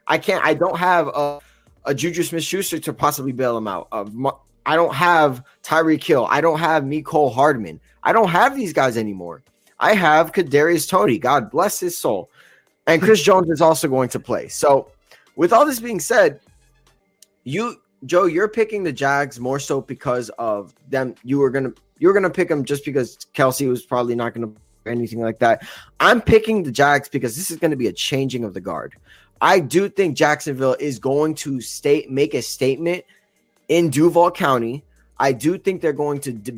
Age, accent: 20-39, American